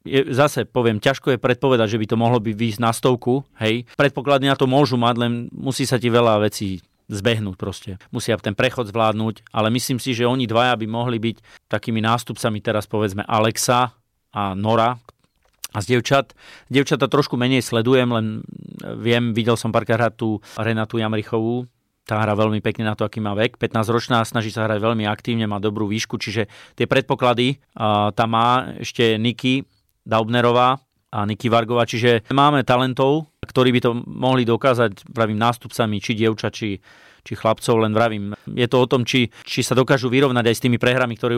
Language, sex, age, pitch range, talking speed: Slovak, male, 40-59, 110-130 Hz, 175 wpm